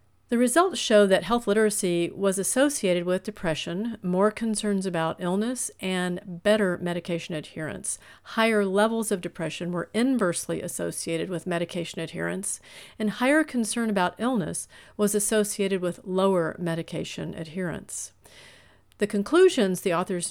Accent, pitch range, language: American, 175-215 Hz, English